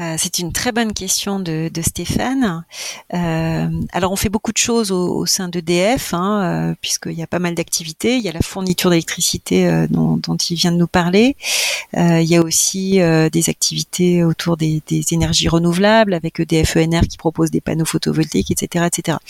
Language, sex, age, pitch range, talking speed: French, female, 40-59, 165-205 Hz, 200 wpm